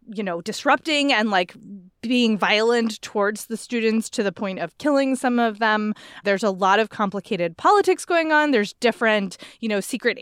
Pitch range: 200-270 Hz